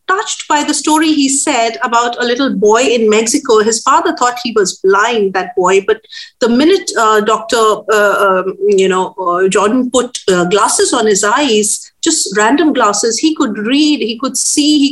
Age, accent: 50-69, Indian